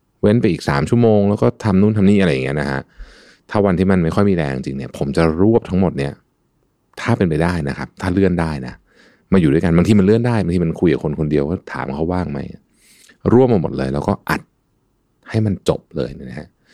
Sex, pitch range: male, 75-95 Hz